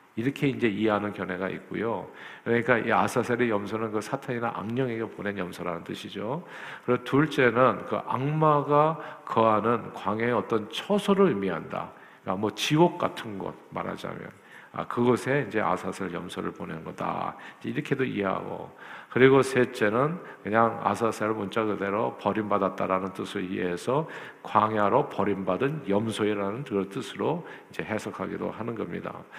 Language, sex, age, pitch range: Korean, male, 50-69, 105-145 Hz